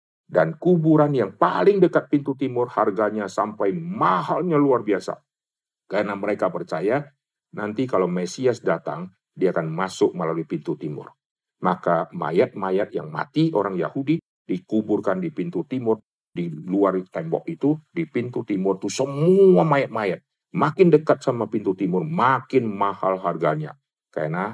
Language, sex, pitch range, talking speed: Indonesian, male, 100-155 Hz, 130 wpm